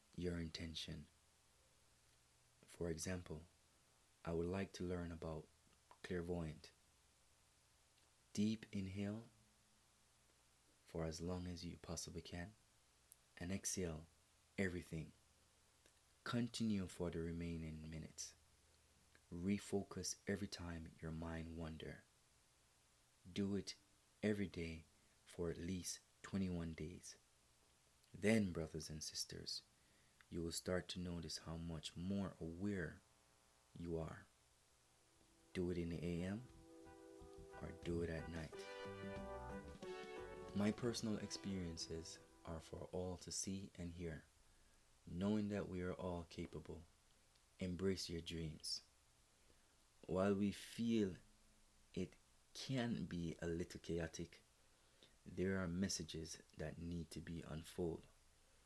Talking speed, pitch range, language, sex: 105 wpm, 75-90 Hz, English, male